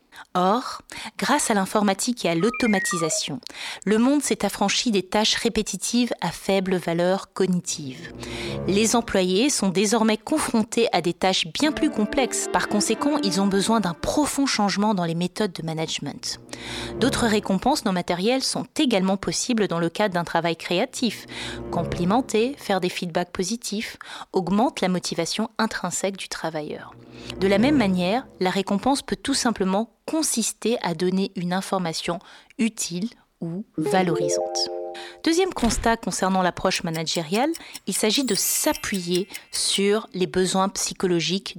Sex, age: female, 20-39